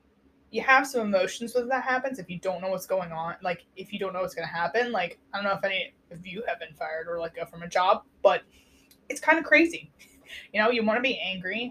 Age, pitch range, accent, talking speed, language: 20-39, 185-245 Hz, American, 260 wpm, English